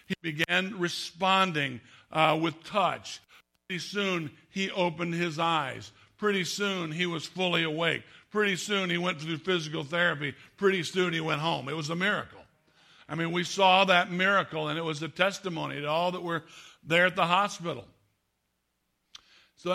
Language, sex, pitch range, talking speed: English, male, 160-185 Hz, 165 wpm